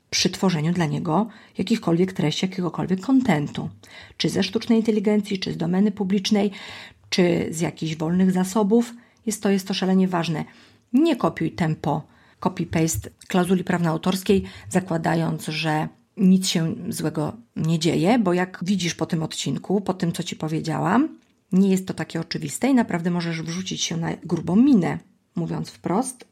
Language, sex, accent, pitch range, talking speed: Polish, female, native, 160-200 Hz, 150 wpm